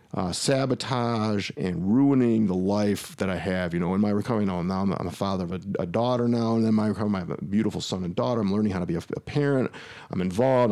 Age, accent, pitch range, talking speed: 40-59, American, 100-125 Hz, 265 wpm